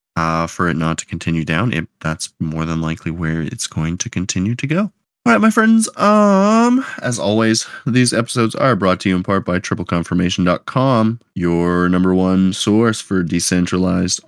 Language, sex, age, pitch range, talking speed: English, male, 20-39, 85-125 Hz, 175 wpm